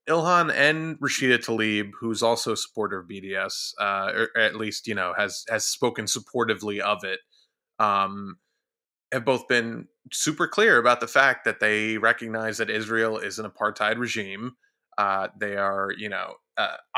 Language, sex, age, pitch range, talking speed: English, male, 20-39, 100-115 Hz, 165 wpm